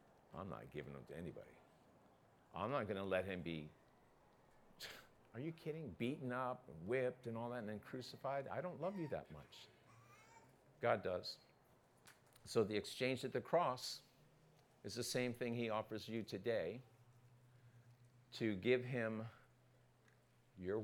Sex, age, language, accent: male, 50-69, English, American